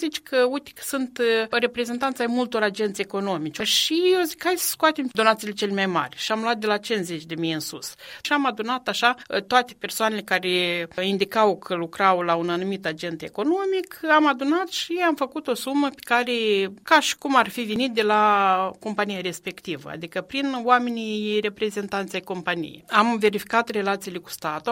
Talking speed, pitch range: 175 wpm, 185-255 Hz